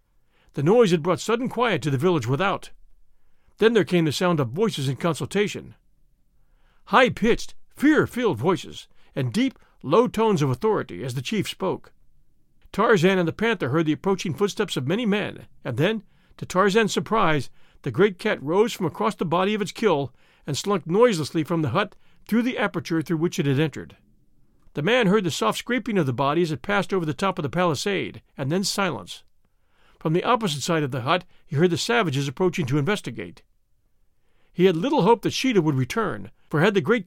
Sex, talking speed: male, 195 wpm